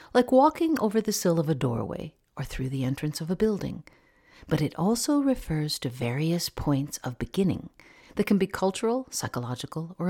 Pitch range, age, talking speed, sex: 130-215 Hz, 50-69, 180 wpm, female